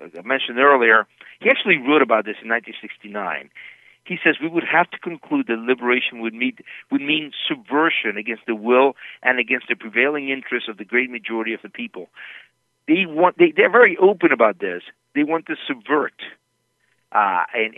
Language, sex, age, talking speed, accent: English, male, 50-69, 190 wpm, American